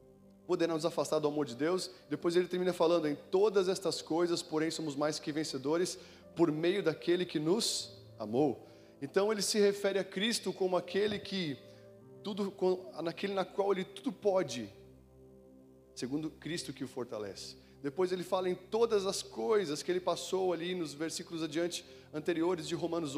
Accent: Brazilian